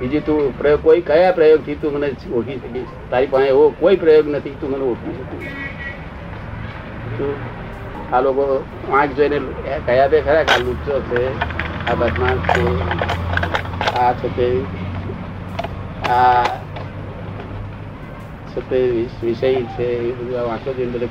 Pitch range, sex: 110-140 Hz, male